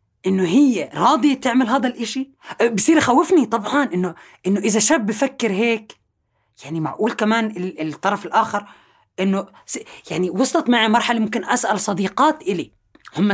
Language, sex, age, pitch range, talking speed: Arabic, female, 30-49, 180-260 Hz, 135 wpm